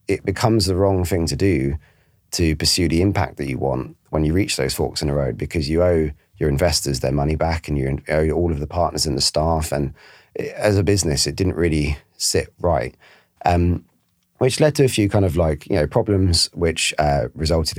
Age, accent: 30-49, British